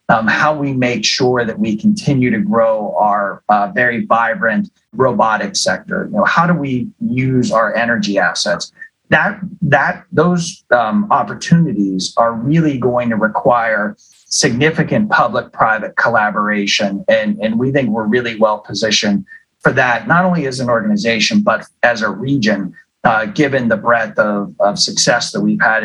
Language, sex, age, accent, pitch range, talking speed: English, male, 30-49, American, 105-175 Hz, 155 wpm